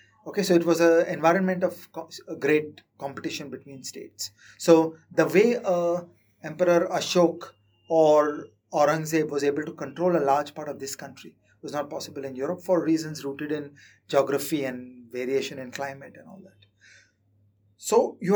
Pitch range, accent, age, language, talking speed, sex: 130-165 Hz, Indian, 30-49, English, 165 wpm, male